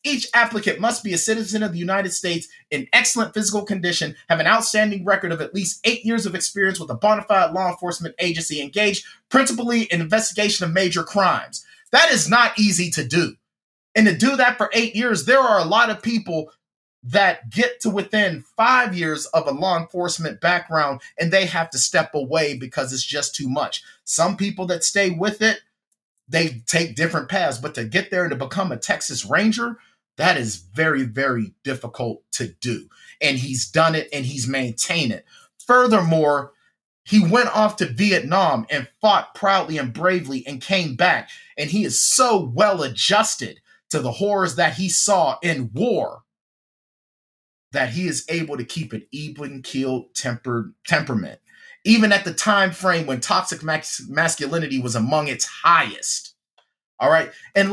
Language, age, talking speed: English, 30-49, 175 wpm